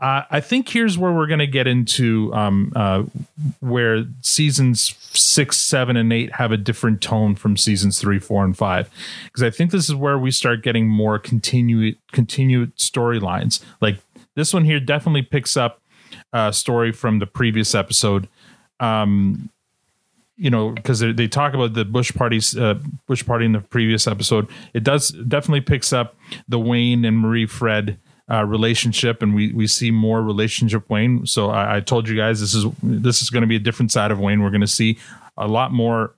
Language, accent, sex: English, American, male